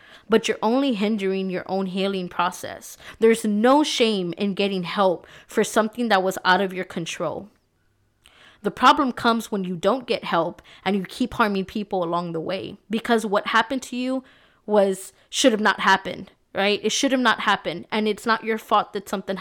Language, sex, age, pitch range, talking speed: English, female, 20-39, 195-230 Hz, 190 wpm